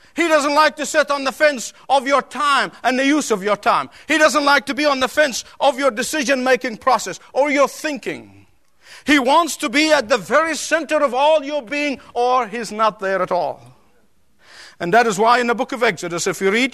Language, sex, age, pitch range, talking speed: English, male, 50-69, 250-300 Hz, 220 wpm